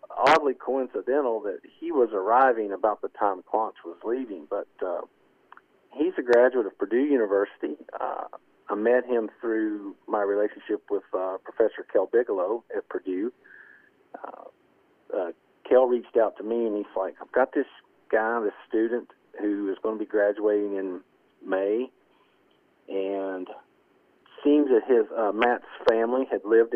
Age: 50-69